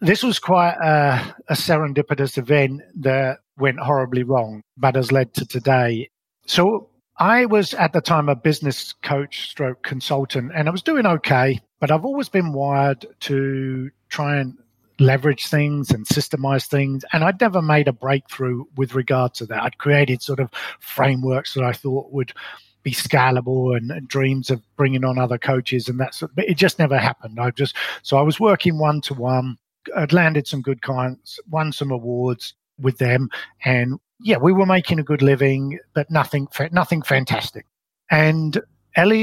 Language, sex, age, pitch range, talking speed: English, male, 50-69, 130-150 Hz, 180 wpm